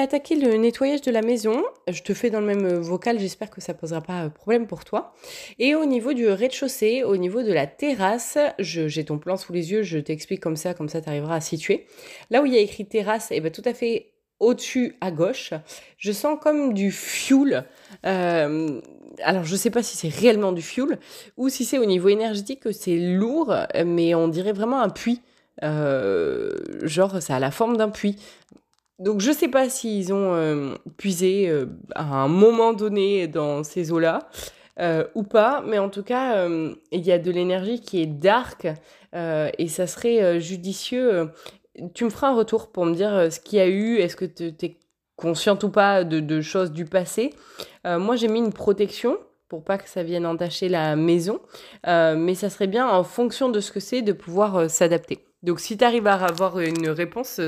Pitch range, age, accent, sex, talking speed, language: 170-235 Hz, 20-39, French, female, 210 wpm, French